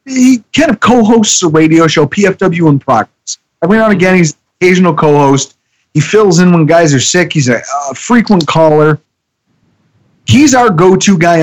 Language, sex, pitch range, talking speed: English, male, 145-215 Hz, 175 wpm